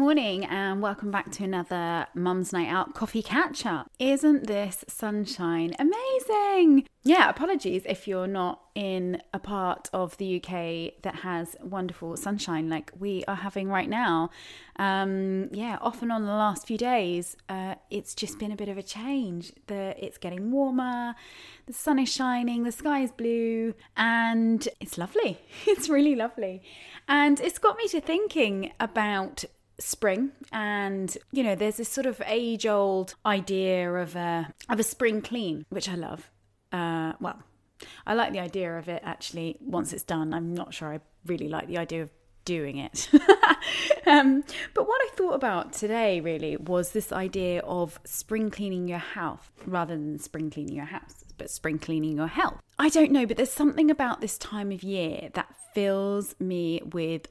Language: English